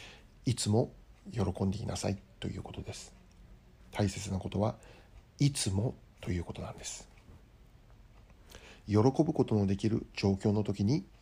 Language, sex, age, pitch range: Japanese, male, 60-79, 95-110 Hz